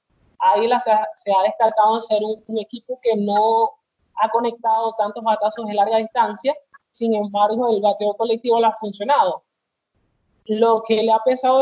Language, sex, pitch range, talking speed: Spanish, male, 205-235 Hz, 165 wpm